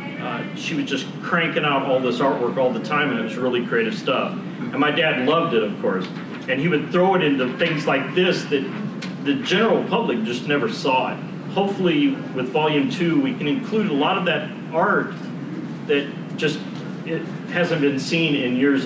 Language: English